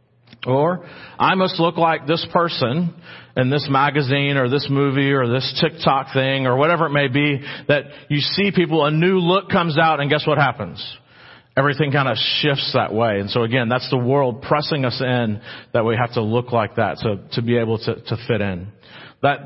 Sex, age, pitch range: male, 40-59, 110-145 Hz